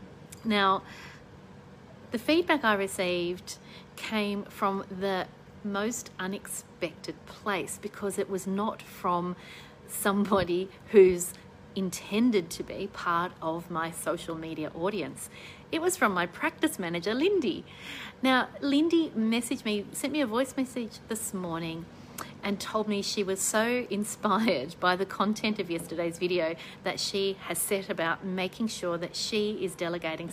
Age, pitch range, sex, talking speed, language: 40-59, 170-210 Hz, female, 135 wpm, English